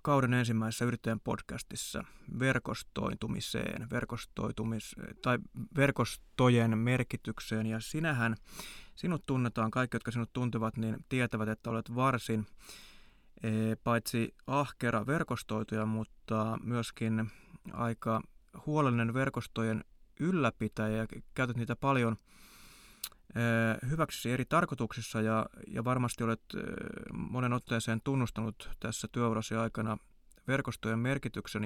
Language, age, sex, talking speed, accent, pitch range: Finnish, 20-39, male, 95 wpm, native, 110-130 Hz